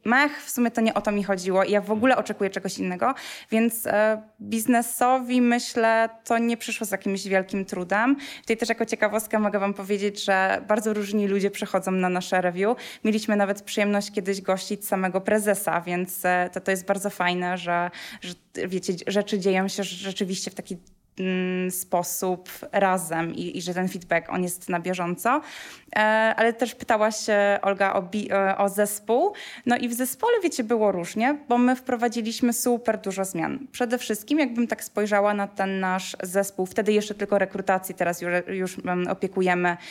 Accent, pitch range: native, 185-225 Hz